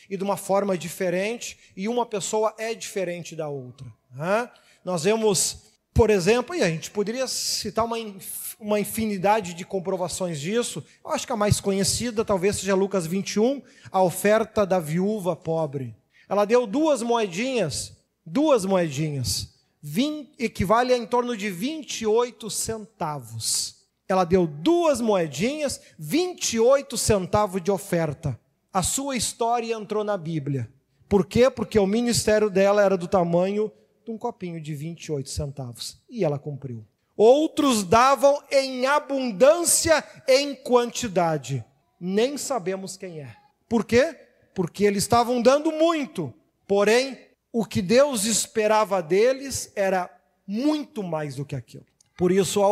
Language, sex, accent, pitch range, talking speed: Portuguese, male, Brazilian, 180-240 Hz, 135 wpm